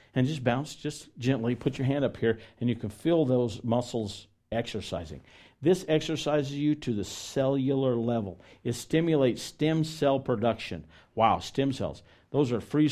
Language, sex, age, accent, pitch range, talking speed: English, male, 50-69, American, 100-135 Hz, 165 wpm